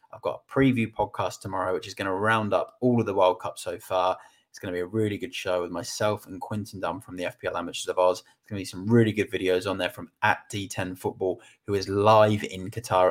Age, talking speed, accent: 20-39, 260 wpm, British